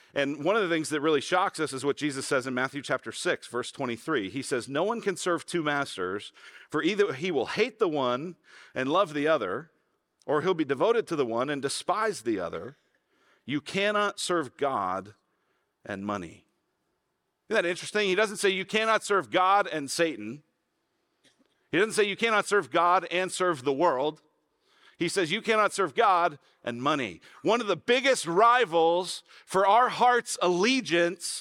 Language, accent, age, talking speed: English, American, 40-59, 180 wpm